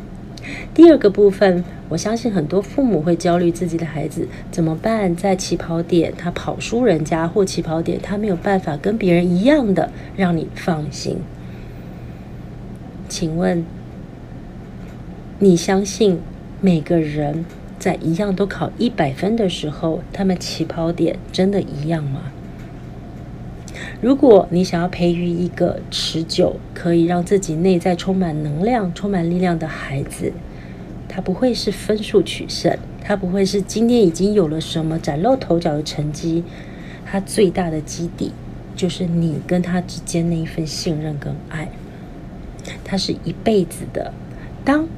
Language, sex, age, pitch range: Chinese, female, 40-59, 165-195 Hz